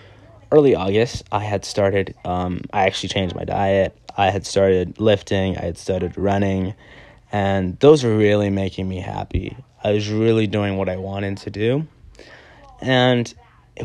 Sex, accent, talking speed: male, American, 160 wpm